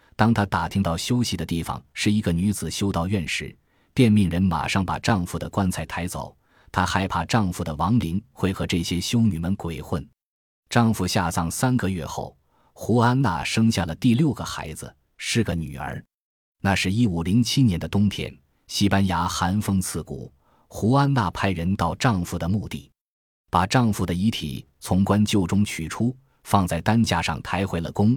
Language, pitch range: Chinese, 85-110 Hz